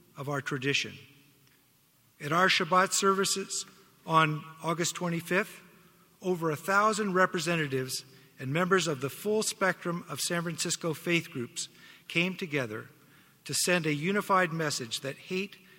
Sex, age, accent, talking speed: male, 50-69, American, 130 wpm